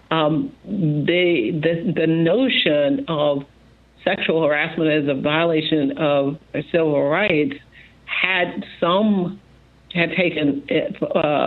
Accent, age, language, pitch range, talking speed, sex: American, 60-79, English, 150-180 Hz, 100 wpm, female